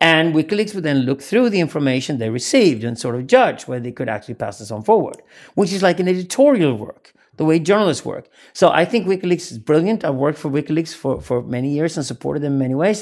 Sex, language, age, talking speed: male, English, 50-69, 240 wpm